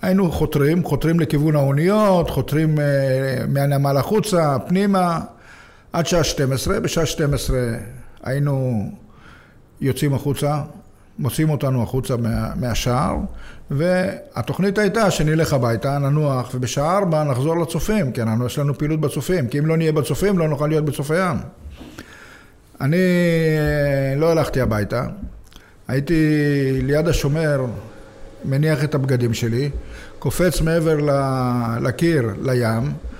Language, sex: Hebrew, male